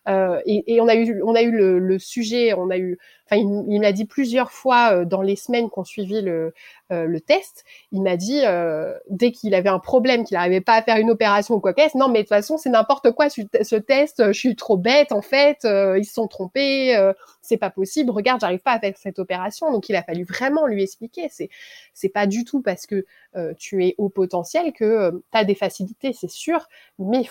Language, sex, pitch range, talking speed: French, female, 195-255 Hz, 245 wpm